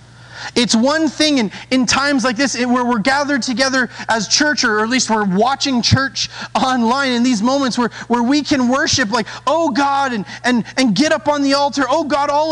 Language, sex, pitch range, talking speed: English, male, 240-300 Hz, 205 wpm